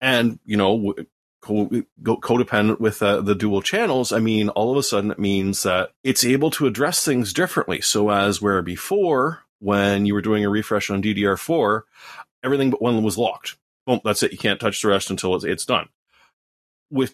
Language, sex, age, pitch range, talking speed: English, male, 30-49, 100-115 Hz, 185 wpm